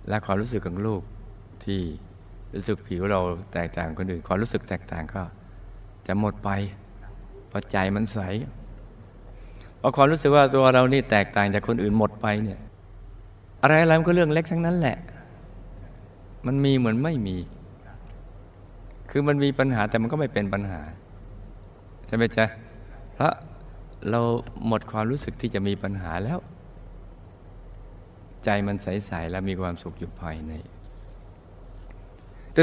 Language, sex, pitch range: Thai, male, 95-110 Hz